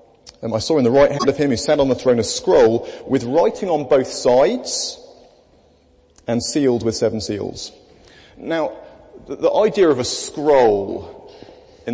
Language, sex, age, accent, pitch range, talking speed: English, male, 30-49, British, 120-170 Hz, 170 wpm